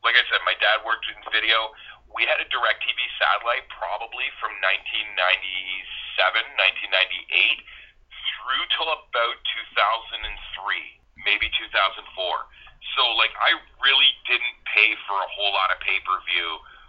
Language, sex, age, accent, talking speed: English, male, 40-59, American, 130 wpm